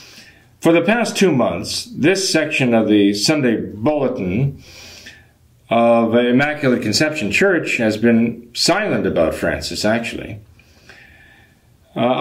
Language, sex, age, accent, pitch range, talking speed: English, male, 50-69, American, 115-150 Hz, 115 wpm